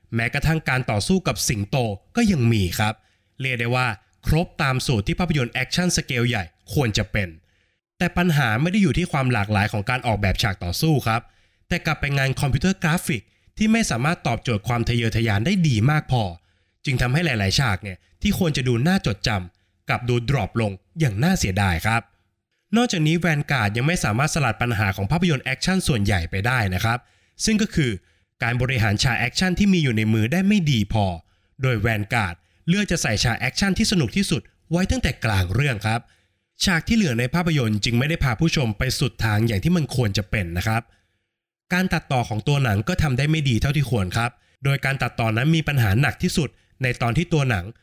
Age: 20-39